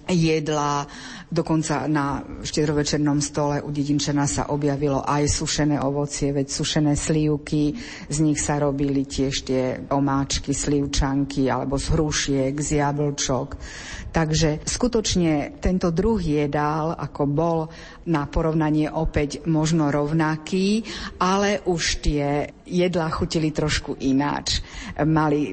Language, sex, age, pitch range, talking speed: Slovak, female, 50-69, 145-160 Hz, 115 wpm